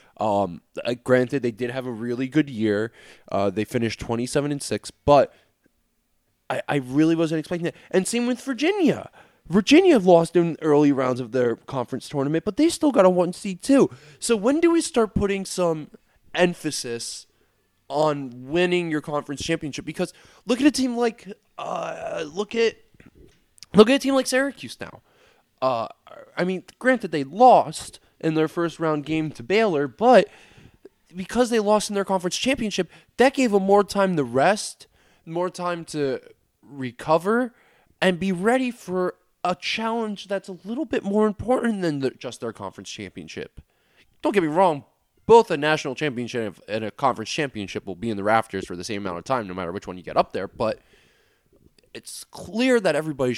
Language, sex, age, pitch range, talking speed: English, male, 20-39, 125-215 Hz, 180 wpm